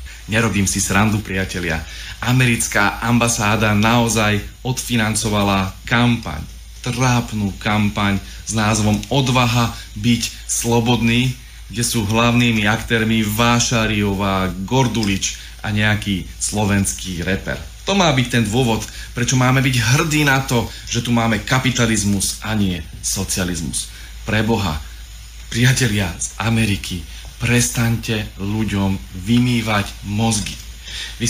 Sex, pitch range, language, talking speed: male, 100-125 Hz, Slovak, 100 wpm